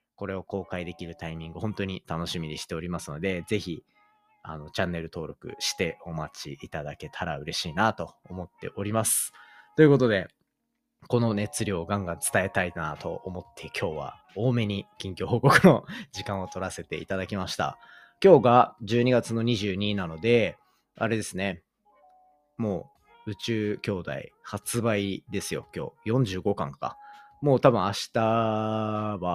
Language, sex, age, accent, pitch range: Japanese, male, 30-49, native, 95-145 Hz